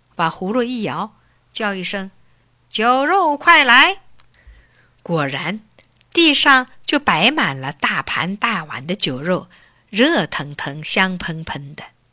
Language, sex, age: Chinese, female, 50-69